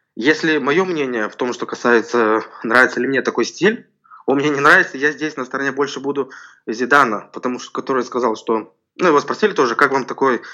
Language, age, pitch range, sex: Russian, 20-39, 115-145 Hz, male